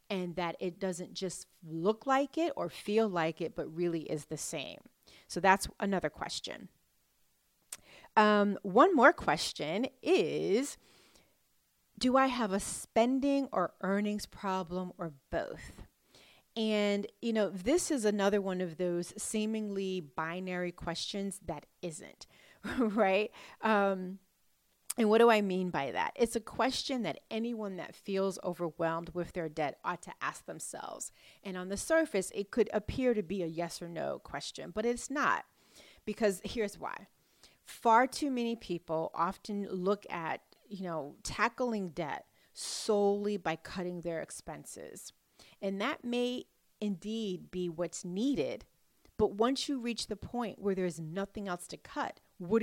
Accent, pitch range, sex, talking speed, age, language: American, 180-225 Hz, female, 150 wpm, 30-49, English